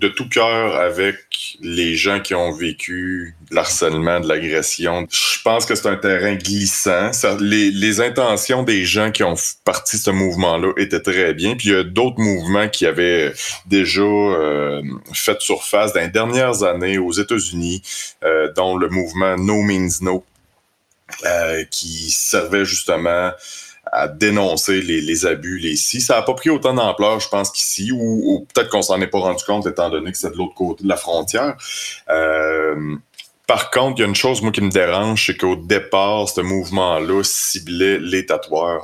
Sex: male